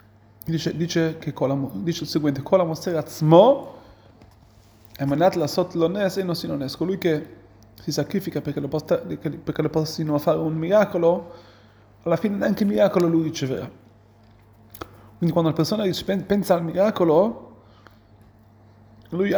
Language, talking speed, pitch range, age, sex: Italian, 100 wpm, 110-175 Hz, 30-49, male